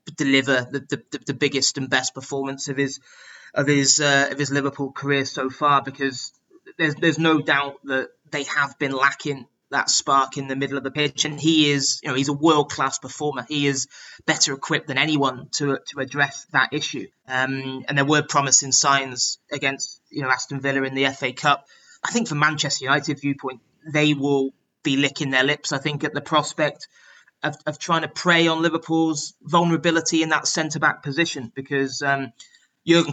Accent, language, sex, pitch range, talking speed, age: British, English, male, 140-155 Hz, 190 wpm, 20-39